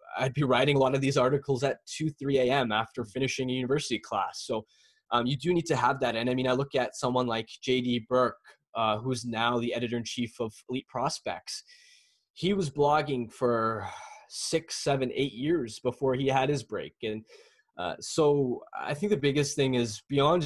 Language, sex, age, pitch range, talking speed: English, male, 20-39, 120-145 Hz, 195 wpm